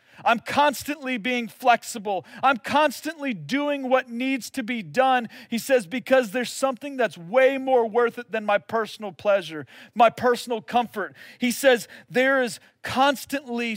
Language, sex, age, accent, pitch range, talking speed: English, male, 40-59, American, 155-250 Hz, 150 wpm